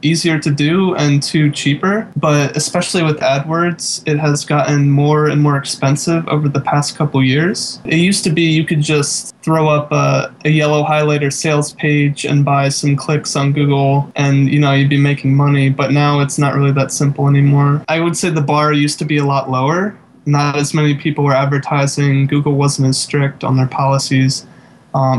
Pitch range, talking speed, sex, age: 140-160 Hz, 200 wpm, male, 20-39